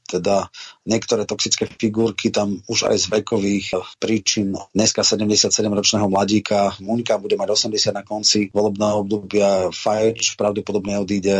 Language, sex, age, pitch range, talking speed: Slovak, male, 30-49, 105-120 Hz, 125 wpm